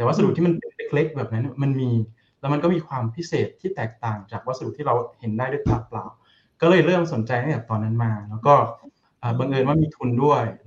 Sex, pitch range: male, 115-155 Hz